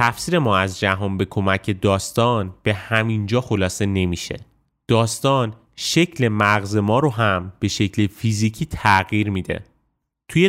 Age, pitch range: 30-49, 105-130 Hz